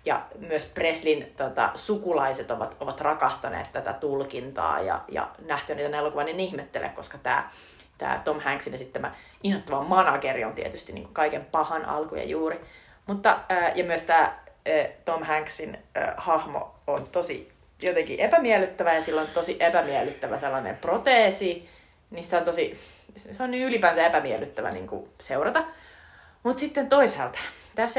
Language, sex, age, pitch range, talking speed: Finnish, female, 30-49, 170-250 Hz, 145 wpm